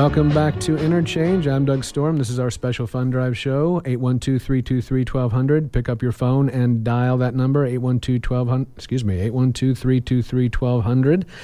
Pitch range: 120-135 Hz